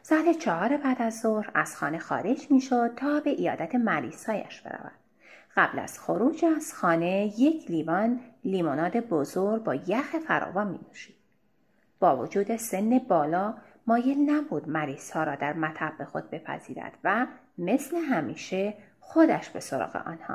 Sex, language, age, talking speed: female, Persian, 30-49, 140 wpm